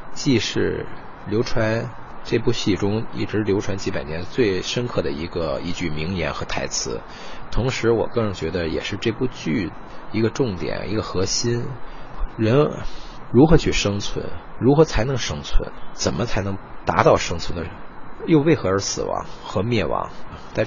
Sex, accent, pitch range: male, native, 80-115 Hz